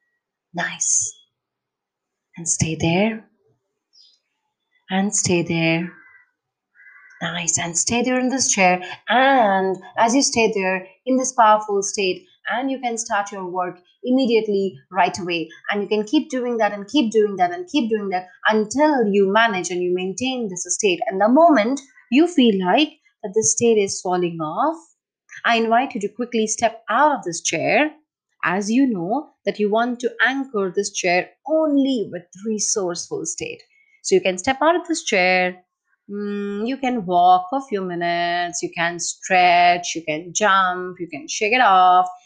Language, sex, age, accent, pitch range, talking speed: English, female, 30-49, Indian, 185-270 Hz, 165 wpm